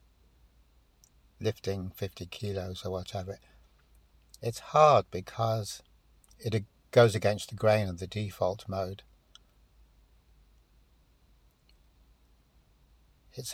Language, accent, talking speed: English, British, 80 wpm